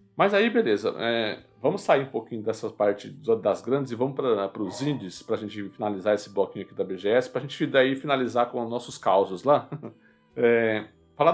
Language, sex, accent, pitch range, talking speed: Portuguese, male, Brazilian, 105-150 Hz, 185 wpm